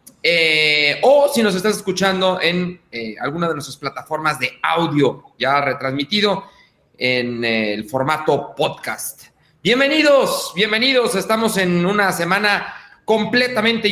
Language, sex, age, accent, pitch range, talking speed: Spanish, male, 40-59, Mexican, 165-215 Hz, 120 wpm